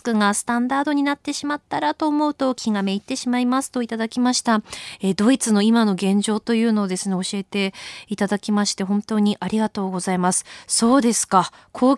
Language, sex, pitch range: Japanese, female, 210-275 Hz